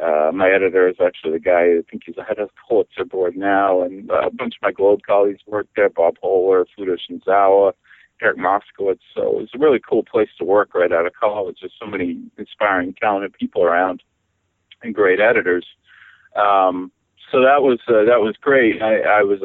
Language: English